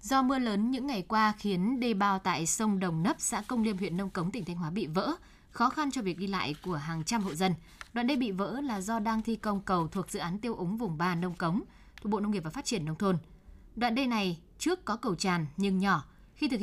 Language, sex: Vietnamese, female